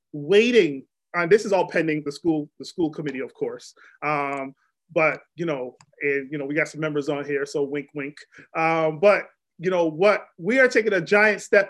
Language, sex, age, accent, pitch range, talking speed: English, male, 30-49, American, 165-210 Hz, 205 wpm